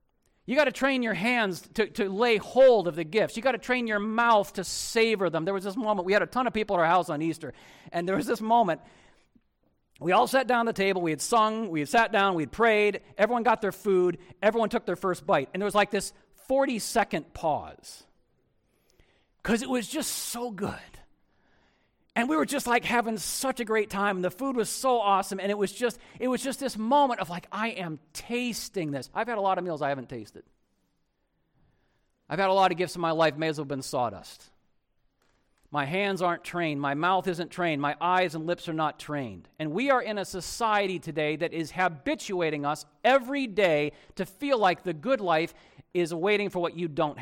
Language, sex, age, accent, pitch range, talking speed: English, male, 40-59, American, 170-230 Hz, 220 wpm